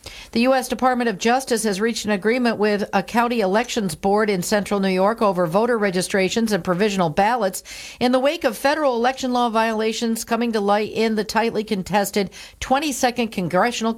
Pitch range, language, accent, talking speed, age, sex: 195-235 Hz, English, American, 175 wpm, 50-69, female